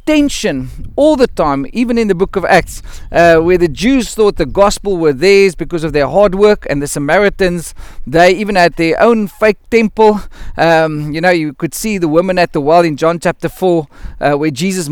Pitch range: 165-215 Hz